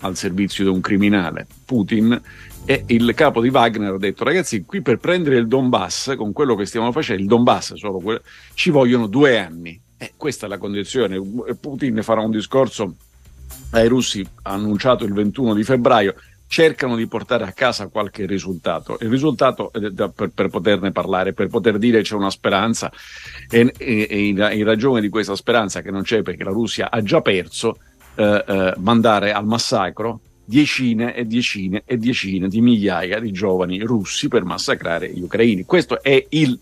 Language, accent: Italian, native